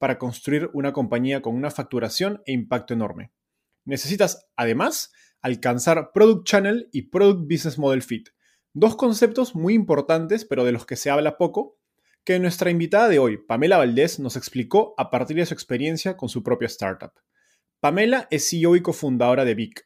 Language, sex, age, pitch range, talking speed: Spanish, male, 20-39, 125-180 Hz, 170 wpm